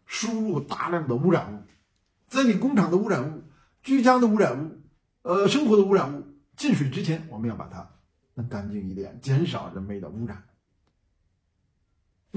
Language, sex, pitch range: Chinese, male, 125-210 Hz